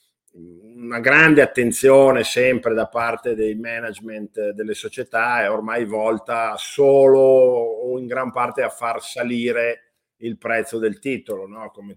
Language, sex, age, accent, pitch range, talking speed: Italian, male, 50-69, native, 100-120 Hz, 135 wpm